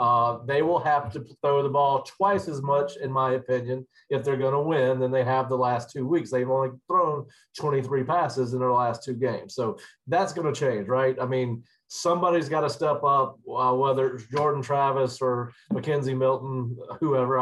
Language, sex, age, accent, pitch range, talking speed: English, male, 40-59, American, 130-150 Hz, 200 wpm